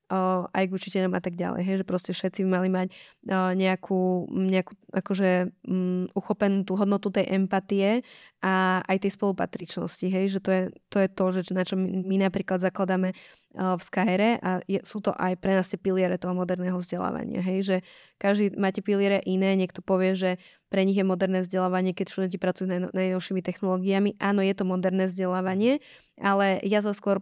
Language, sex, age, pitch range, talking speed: Slovak, female, 20-39, 185-195 Hz, 185 wpm